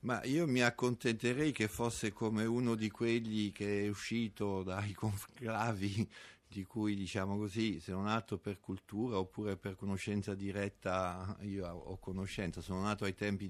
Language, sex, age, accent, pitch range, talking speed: Italian, male, 50-69, native, 95-110 Hz, 155 wpm